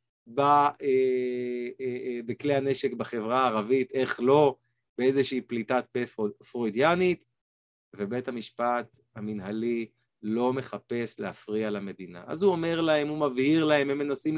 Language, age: Hebrew, 30-49